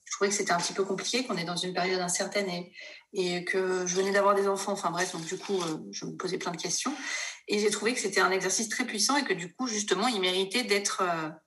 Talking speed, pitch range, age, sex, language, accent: 255 wpm, 185-220 Hz, 30-49, female, French, French